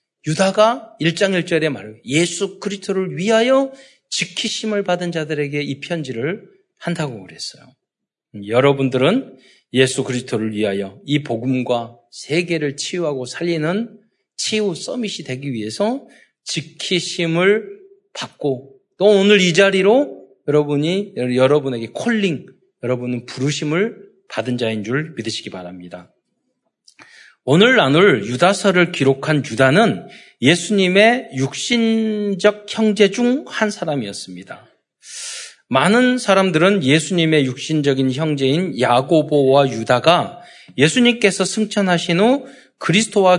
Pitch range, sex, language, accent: 135-205 Hz, male, Korean, native